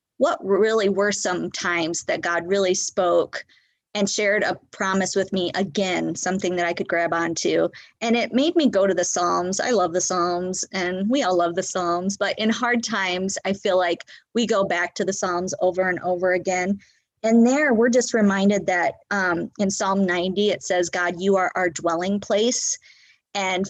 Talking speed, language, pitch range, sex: 190 wpm, English, 180-220 Hz, female